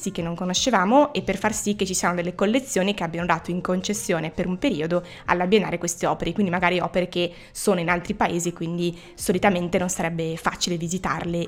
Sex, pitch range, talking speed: female, 175-230 Hz, 195 wpm